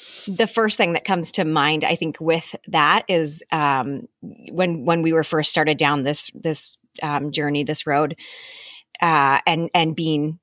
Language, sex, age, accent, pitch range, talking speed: English, female, 30-49, American, 155-200 Hz, 175 wpm